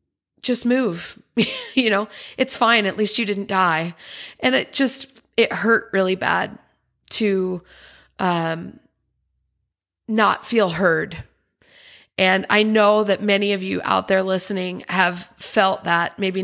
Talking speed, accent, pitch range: 135 wpm, American, 190-235 Hz